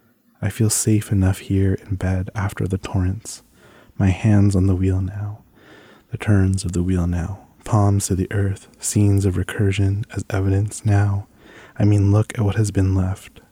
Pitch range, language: 95-105 Hz, English